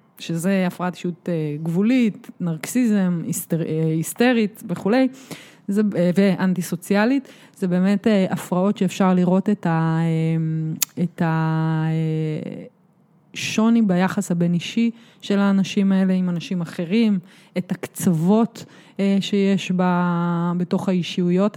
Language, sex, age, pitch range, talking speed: Hebrew, female, 20-39, 175-210 Hz, 90 wpm